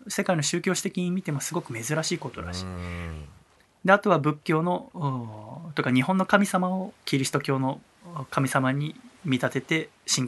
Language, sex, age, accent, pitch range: Japanese, male, 20-39, native, 125-185 Hz